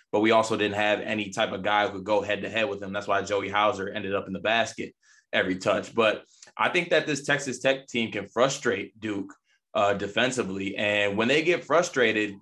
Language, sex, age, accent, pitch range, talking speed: English, male, 20-39, American, 100-125 Hz, 215 wpm